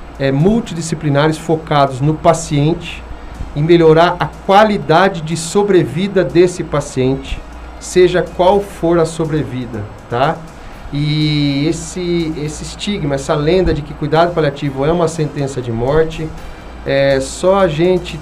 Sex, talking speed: male, 120 wpm